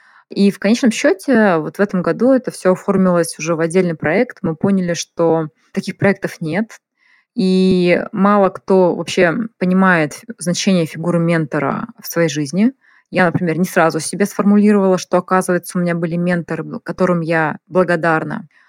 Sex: female